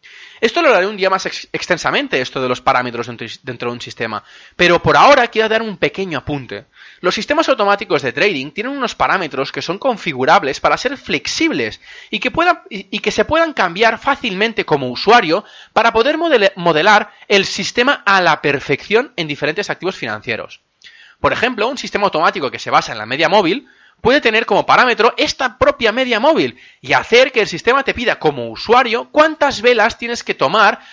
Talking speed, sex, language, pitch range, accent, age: 190 wpm, male, Spanish, 165-255 Hz, Spanish, 30-49